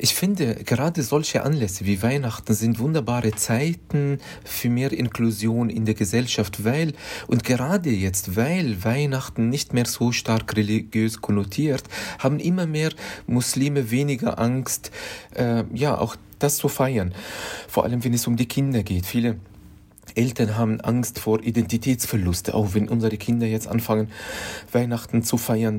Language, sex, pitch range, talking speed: German, male, 110-125 Hz, 145 wpm